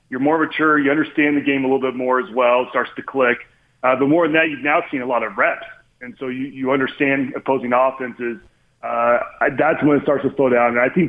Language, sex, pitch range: English, male, 125-150 Hz